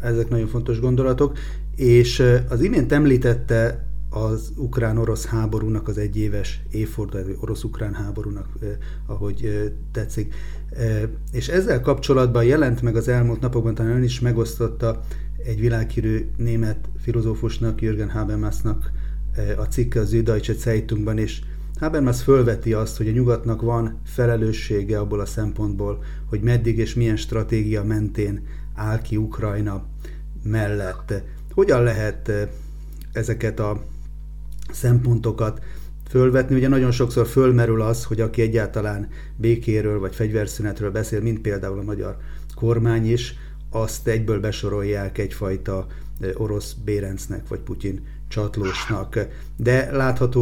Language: Hungarian